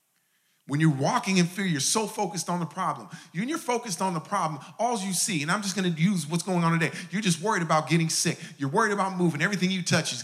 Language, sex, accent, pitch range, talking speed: English, male, American, 160-195 Hz, 260 wpm